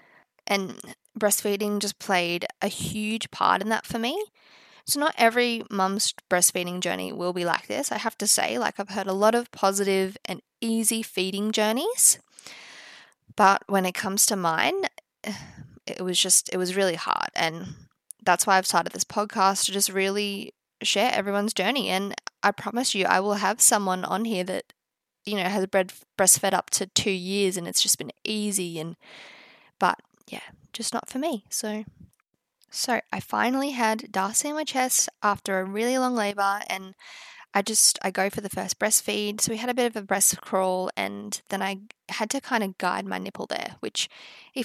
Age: 20-39